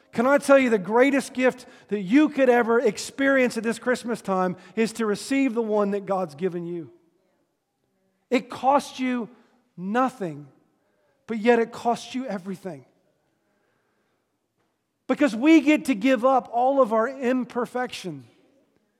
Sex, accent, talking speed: male, American, 140 wpm